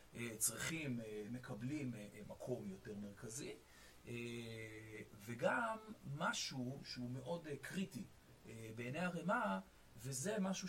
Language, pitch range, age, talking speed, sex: Hebrew, 120-190 Hz, 40-59, 80 wpm, male